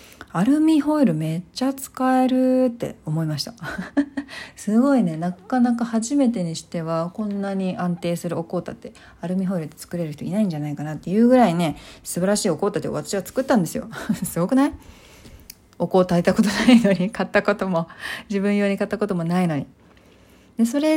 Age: 40-59